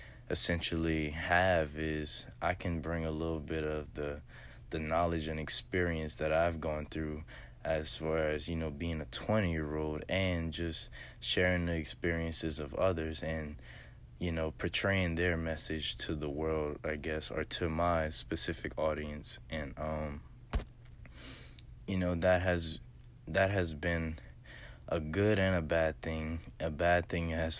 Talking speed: 155 wpm